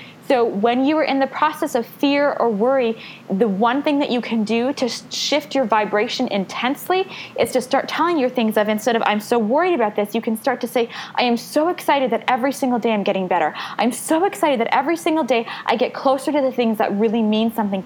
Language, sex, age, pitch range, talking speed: English, female, 20-39, 215-275 Hz, 235 wpm